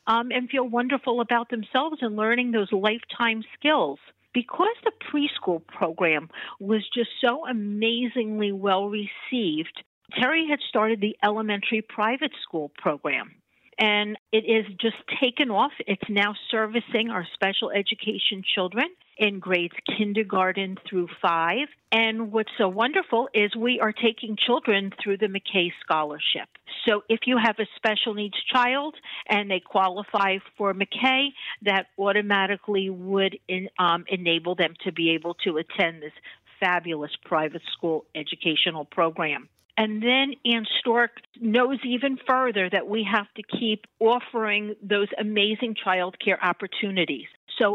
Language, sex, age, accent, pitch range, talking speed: English, female, 50-69, American, 190-230 Hz, 135 wpm